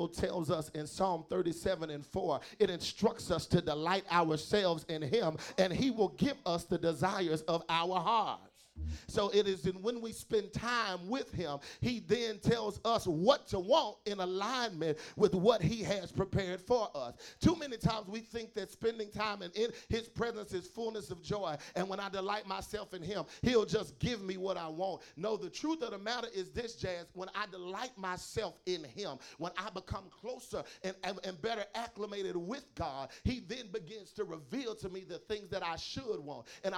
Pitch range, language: 180-220 Hz, English